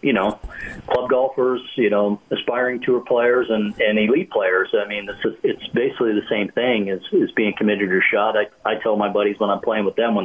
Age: 40-59